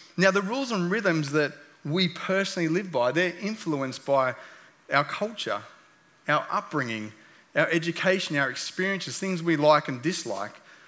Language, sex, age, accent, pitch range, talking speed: English, male, 30-49, Australian, 145-180 Hz, 145 wpm